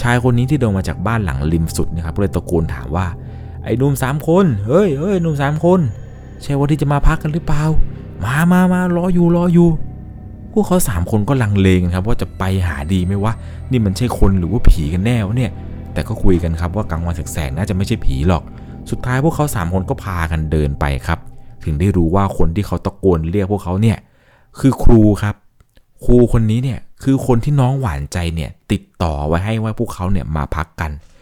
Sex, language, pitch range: male, Thai, 85-125 Hz